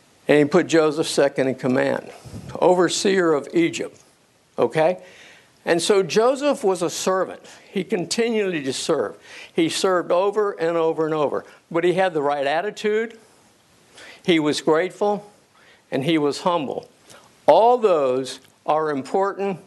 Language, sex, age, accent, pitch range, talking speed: English, male, 60-79, American, 150-195 Hz, 135 wpm